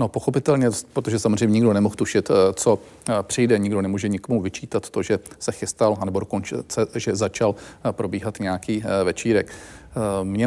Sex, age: male, 40-59